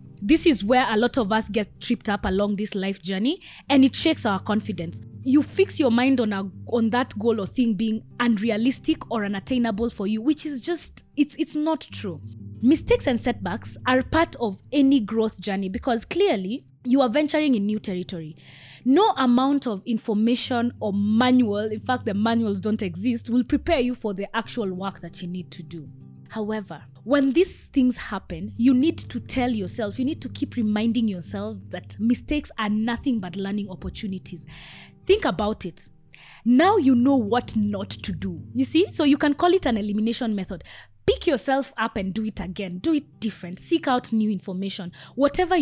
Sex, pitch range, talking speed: female, 195-260 Hz, 185 wpm